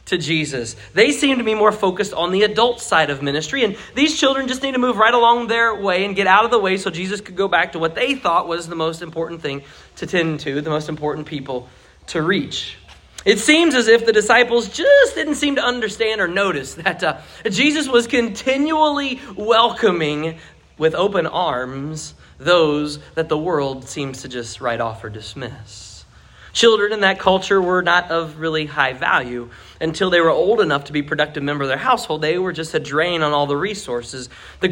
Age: 30-49